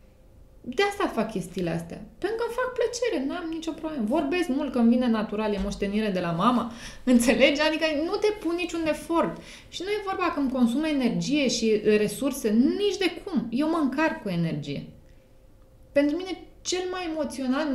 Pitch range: 195-300 Hz